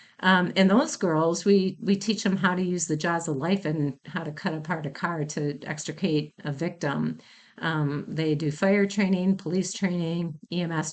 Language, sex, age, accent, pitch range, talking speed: English, female, 40-59, American, 155-190 Hz, 185 wpm